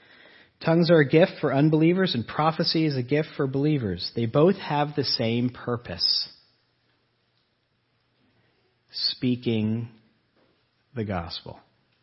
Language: English